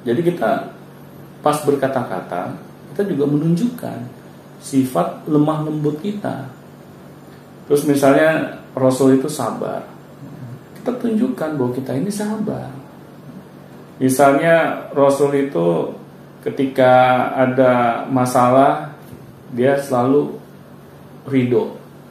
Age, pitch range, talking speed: 40-59, 120-165 Hz, 80 wpm